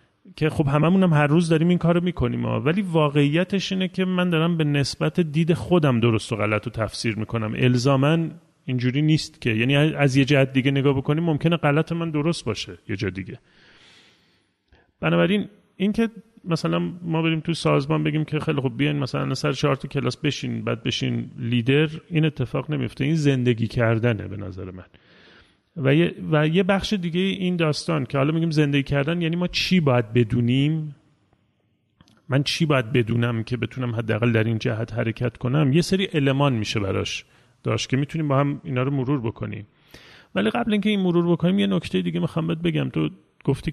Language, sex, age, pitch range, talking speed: Persian, male, 30-49, 120-165 Hz, 180 wpm